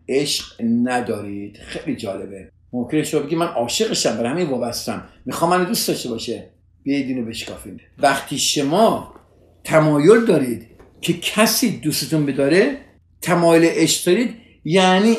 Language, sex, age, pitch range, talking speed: Persian, male, 50-69, 130-195 Hz, 125 wpm